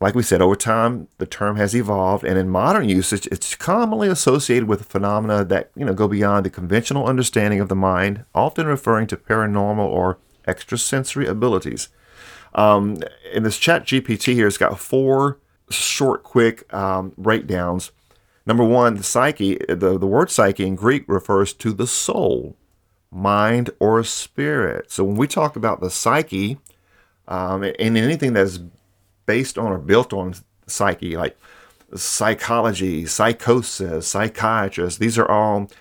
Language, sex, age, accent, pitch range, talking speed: English, male, 40-59, American, 95-115 Hz, 150 wpm